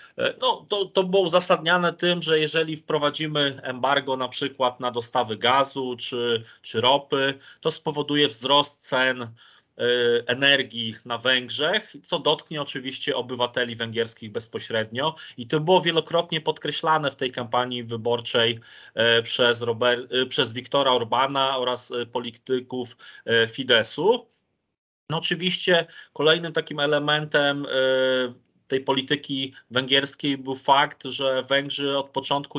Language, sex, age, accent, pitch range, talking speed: Polish, male, 30-49, native, 125-150 Hz, 120 wpm